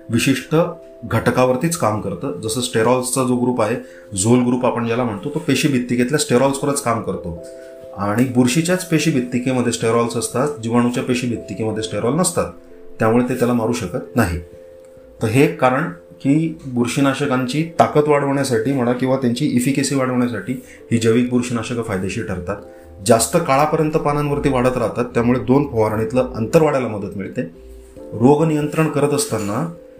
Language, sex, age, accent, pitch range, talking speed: Hindi, male, 30-49, native, 110-140 Hz, 90 wpm